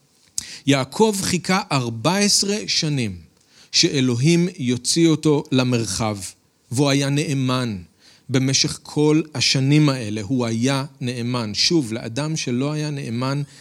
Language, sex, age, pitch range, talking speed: Hebrew, male, 40-59, 125-165 Hz, 100 wpm